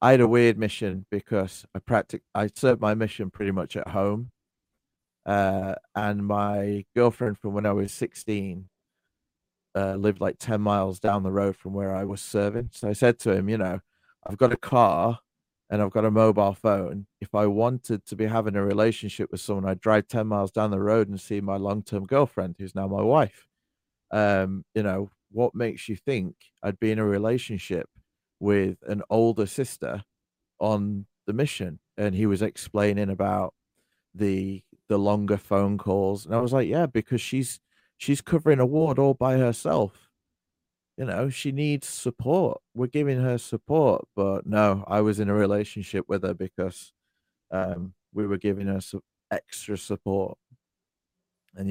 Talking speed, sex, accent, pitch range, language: 175 wpm, male, British, 95-110 Hz, English